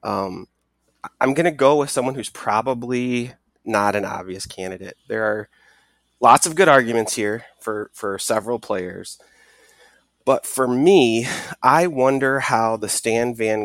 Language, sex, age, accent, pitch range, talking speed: English, male, 30-49, American, 100-120 Hz, 145 wpm